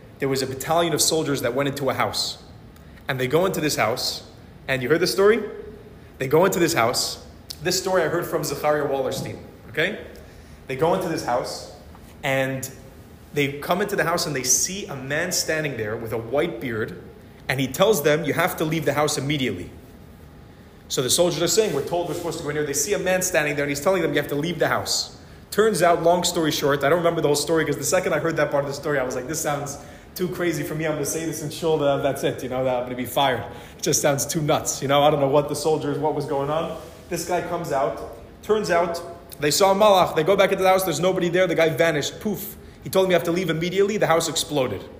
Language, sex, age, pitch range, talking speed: English, male, 30-49, 135-170 Hz, 255 wpm